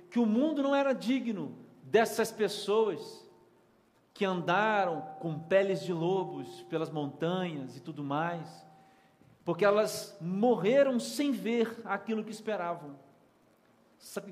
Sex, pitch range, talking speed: male, 170-225 Hz, 115 wpm